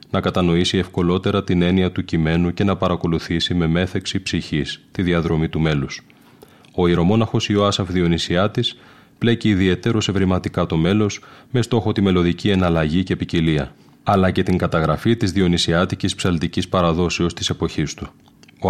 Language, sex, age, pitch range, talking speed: Greek, male, 30-49, 85-100 Hz, 145 wpm